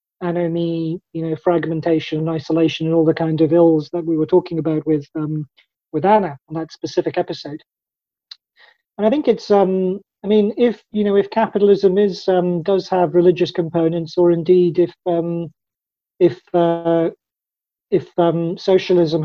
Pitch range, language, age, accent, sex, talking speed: 165-195 Hz, English, 40-59, British, male, 160 wpm